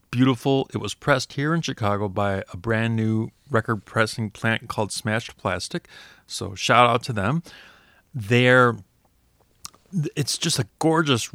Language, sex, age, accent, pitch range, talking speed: English, male, 30-49, American, 105-140 Hz, 145 wpm